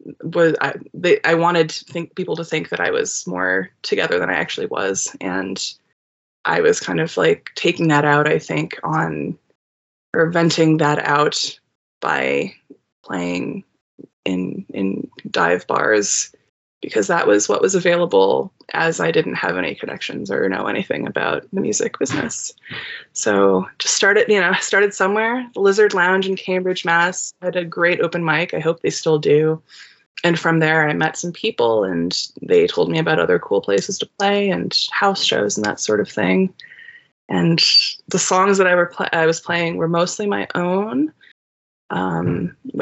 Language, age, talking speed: English, 20-39, 170 wpm